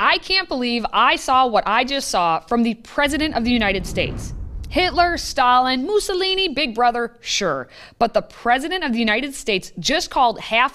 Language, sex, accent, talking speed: English, female, American, 180 wpm